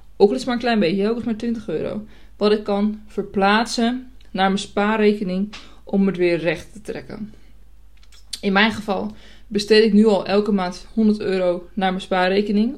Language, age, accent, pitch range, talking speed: Dutch, 20-39, Dutch, 185-215 Hz, 190 wpm